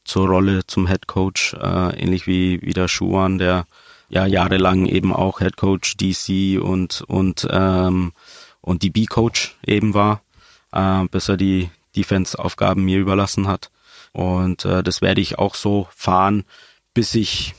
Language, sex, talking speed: German, male, 155 wpm